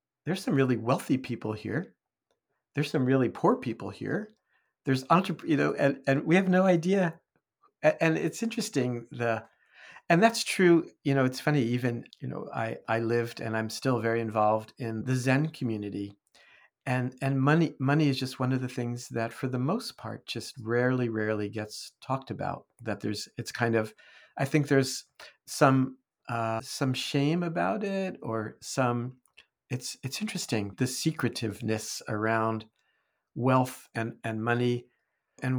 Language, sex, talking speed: English, male, 165 wpm